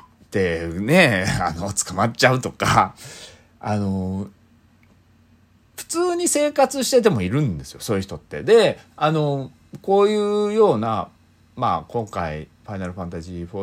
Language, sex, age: Japanese, male, 40-59